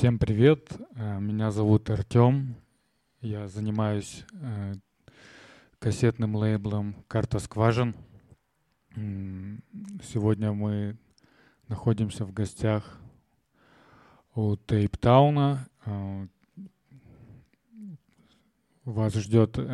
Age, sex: 20-39, male